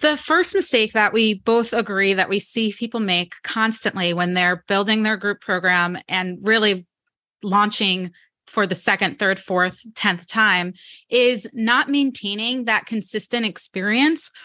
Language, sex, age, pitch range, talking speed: English, female, 30-49, 195-250 Hz, 145 wpm